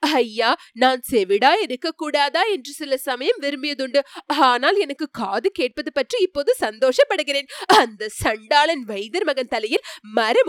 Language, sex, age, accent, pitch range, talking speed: Tamil, female, 20-39, native, 235-345 Hz, 115 wpm